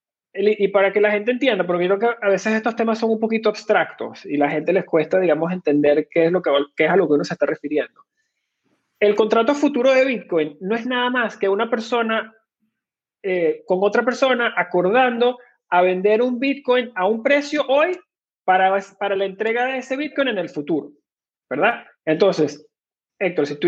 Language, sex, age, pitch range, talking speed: Spanish, male, 30-49, 185-245 Hz, 190 wpm